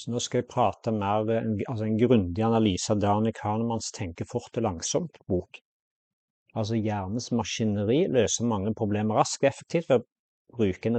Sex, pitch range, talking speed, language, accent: male, 105-125 Hz, 140 wpm, English, Norwegian